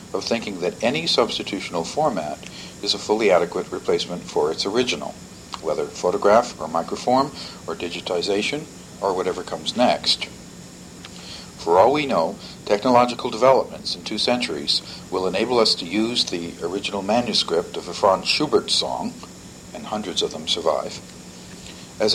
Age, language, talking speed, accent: 50-69, English, 140 wpm, American